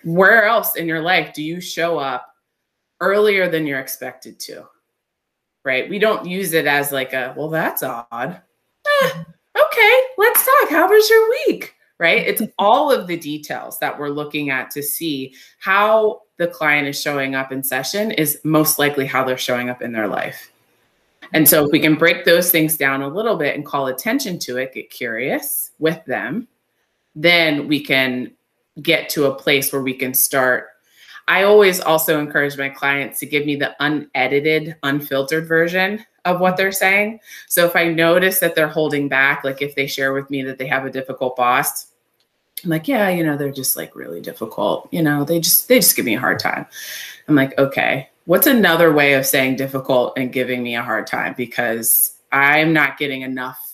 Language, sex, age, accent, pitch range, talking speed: English, female, 20-39, American, 135-180 Hz, 195 wpm